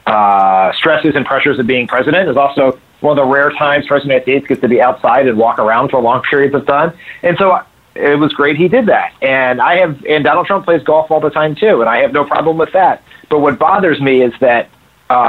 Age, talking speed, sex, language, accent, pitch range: 40-59, 245 wpm, male, English, American, 125-155 Hz